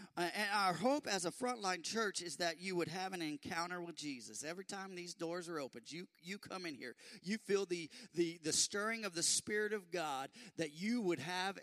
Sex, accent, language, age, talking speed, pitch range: male, American, English, 40-59, 220 wpm, 145-185 Hz